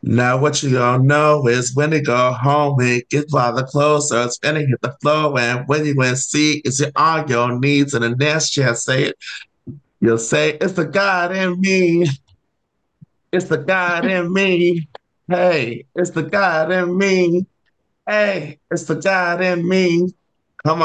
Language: English